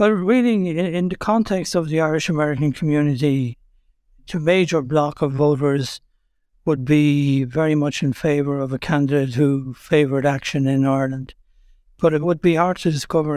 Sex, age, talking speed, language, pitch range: male, 60-79, 155 wpm, English, 140-160 Hz